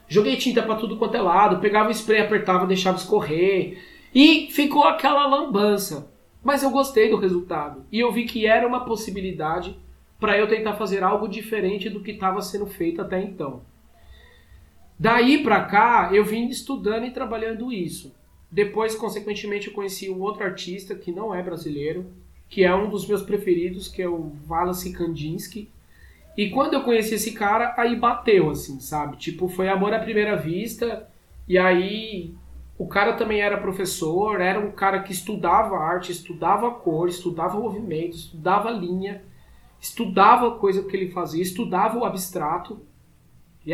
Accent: Brazilian